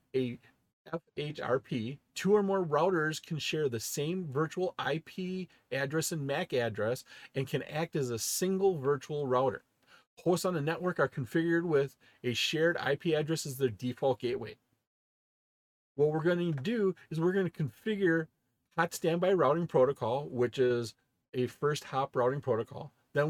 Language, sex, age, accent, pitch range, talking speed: English, male, 40-59, American, 135-175 Hz, 155 wpm